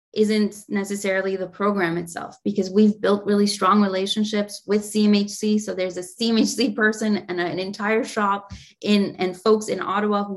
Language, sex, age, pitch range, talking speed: English, female, 20-39, 185-215 Hz, 160 wpm